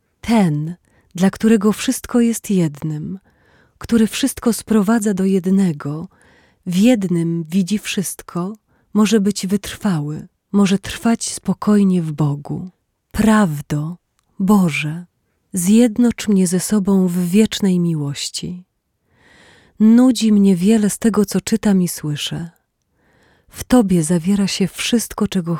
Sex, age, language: female, 30-49, Polish